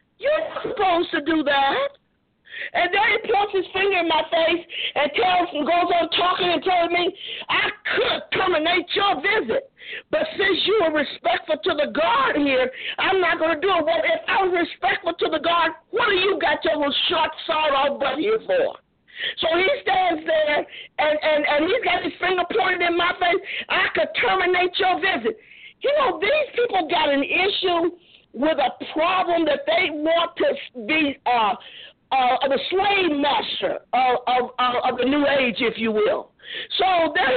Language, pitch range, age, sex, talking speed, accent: English, 310-380 Hz, 50-69, female, 180 wpm, American